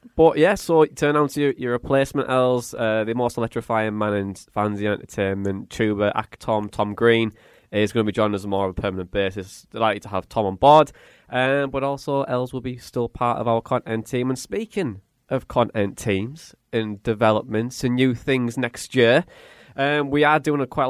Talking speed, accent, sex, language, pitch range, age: 205 wpm, British, male, English, 100-125 Hz, 20-39